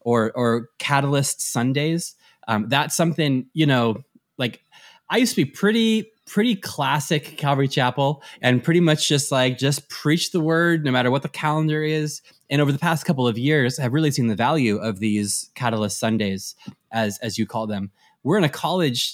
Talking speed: 185 wpm